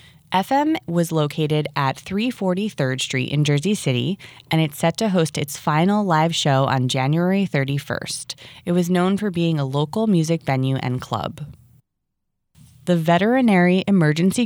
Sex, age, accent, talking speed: female, 20-39, American, 145 wpm